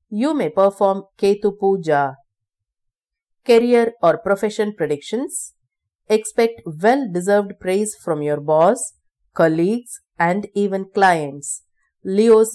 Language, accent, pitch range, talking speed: English, Indian, 165-230 Hz, 95 wpm